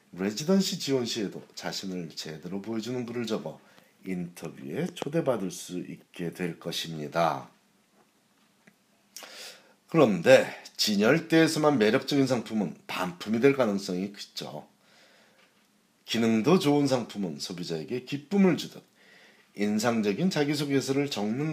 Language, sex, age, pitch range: Korean, male, 40-59, 90-140 Hz